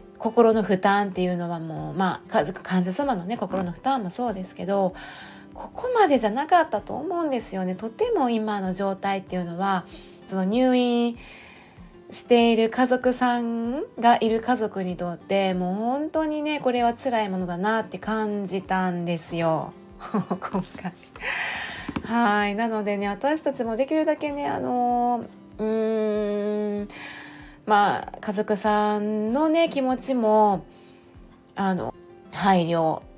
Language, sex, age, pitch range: Japanese, female, 30-49, 185-235 Hz